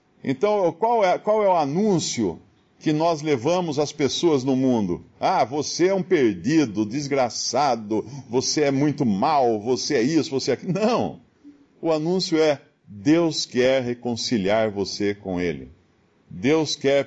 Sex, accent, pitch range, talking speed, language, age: male, Brazilian, 125-185 Hz, 145 wpm, English, 50-69